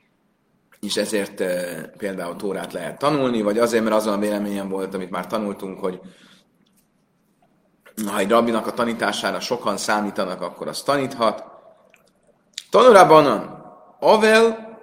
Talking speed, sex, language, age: 120 wpm, male, Hungarian, 30-49